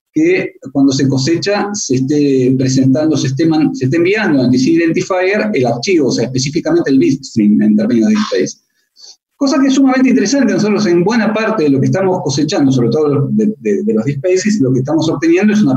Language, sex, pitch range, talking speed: Spanish, male, 145-220 Hz, 200 wpm